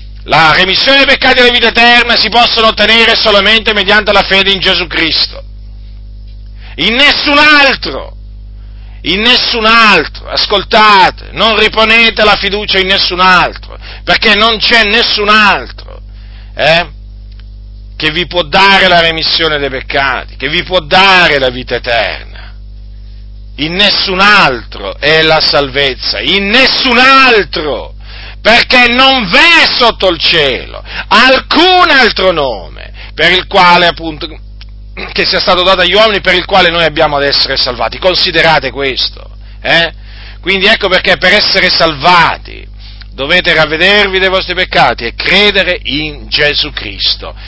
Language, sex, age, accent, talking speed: Italian, male, 50-69, native, 135 wpm